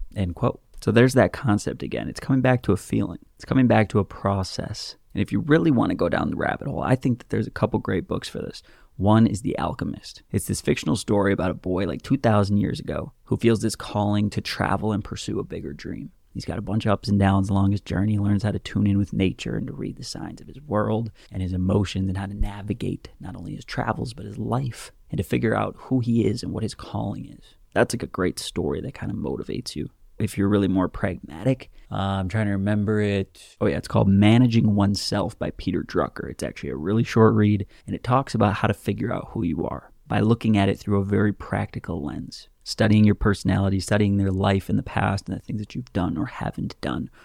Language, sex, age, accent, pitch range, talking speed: English, male, 20-39, American, 95-110 Hz, 245 wpm